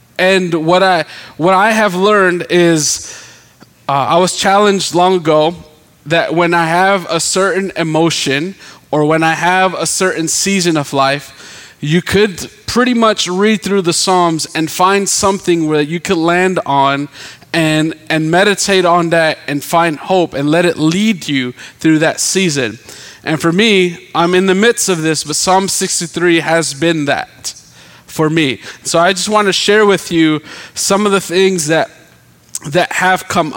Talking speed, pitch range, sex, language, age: 170 wpm, 150-185 Hz, male, English, 20-39